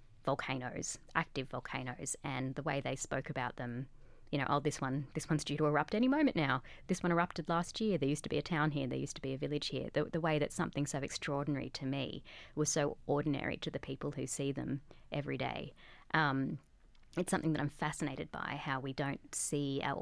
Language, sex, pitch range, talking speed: English, female, 135-150 Hz, 220 wpm